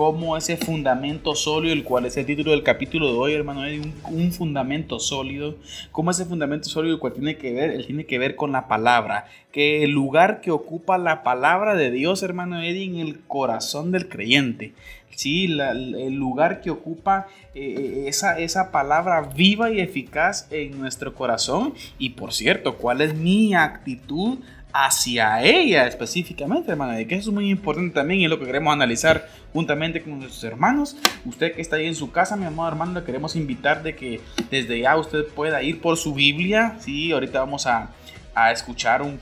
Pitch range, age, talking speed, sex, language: 140-190 Hz, 30-49, 185 wpm, male, Spanish